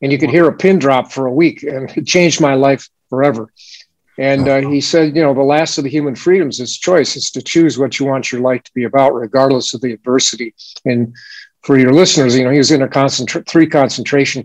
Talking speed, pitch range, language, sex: 240 wpm, 125-145 Hz, English, male